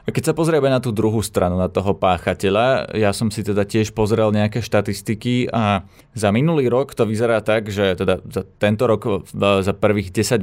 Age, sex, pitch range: 20-39, male, 100-125 Hz